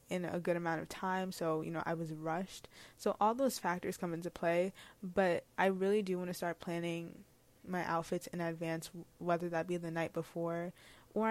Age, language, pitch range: 20-39, English, 170-195 Hz